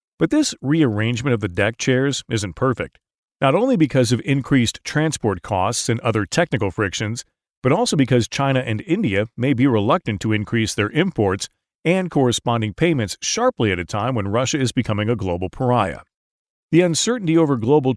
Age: 40-59